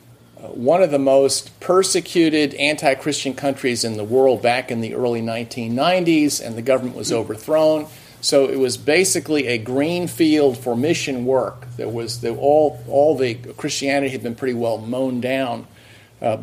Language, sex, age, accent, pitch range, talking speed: English, male, 50-69, American, 130-170 Hz, 160 wpm